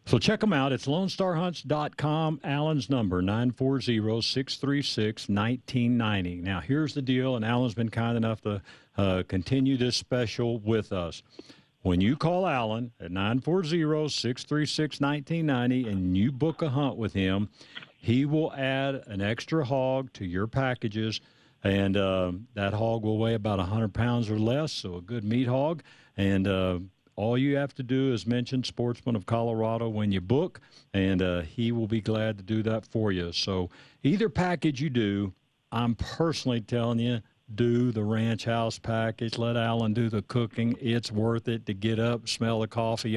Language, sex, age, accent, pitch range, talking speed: English, male, 50-69, American, 105-130 Hz, 165 wpm